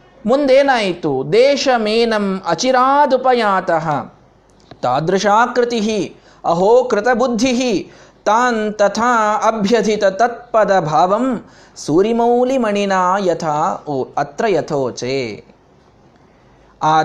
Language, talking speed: Kannada, 55 wpm